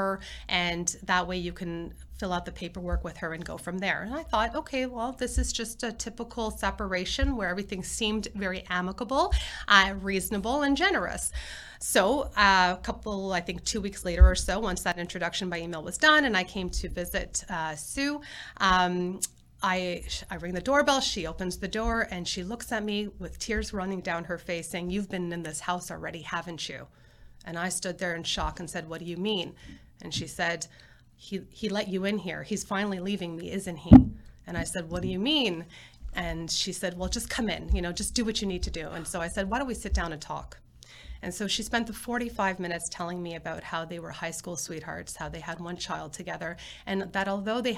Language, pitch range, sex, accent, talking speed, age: English, 175-215 Hz, female, American, 220 wpm, 30-49